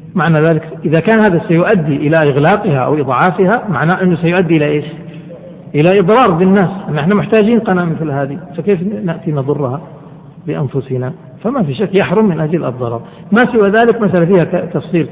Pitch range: 145-175 Hz